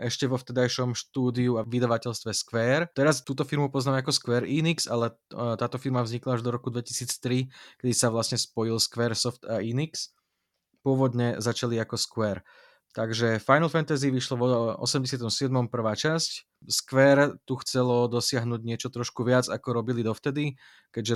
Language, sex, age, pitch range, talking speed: Slovak, male, 20-39, 115-135 Hz, 150 wpm